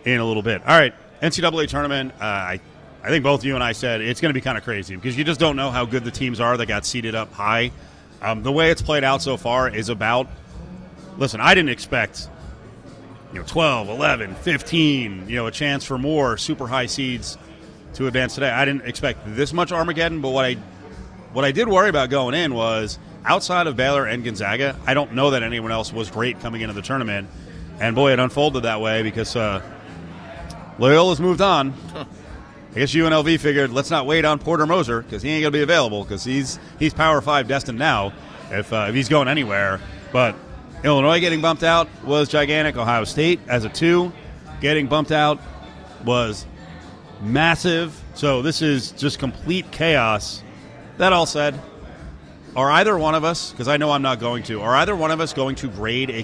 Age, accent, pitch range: 30-49, American, 110-150 Hz